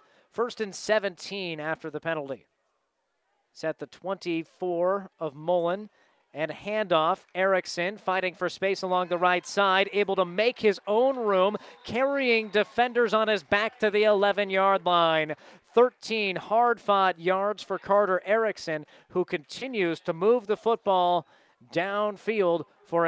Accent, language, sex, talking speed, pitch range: American, English, male, 130 wpm, 175-205 Hz